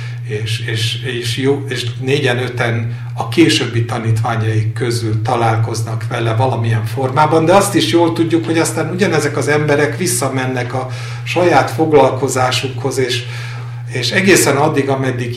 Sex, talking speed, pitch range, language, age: male, 115 wpm, 120-140 Hz, Hungarian, 60-79